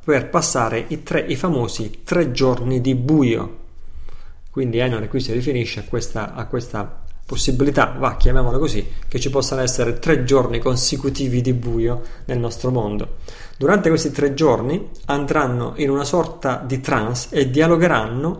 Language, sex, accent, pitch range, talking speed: Italian, male, native, 115-150 Hz, 155 wpm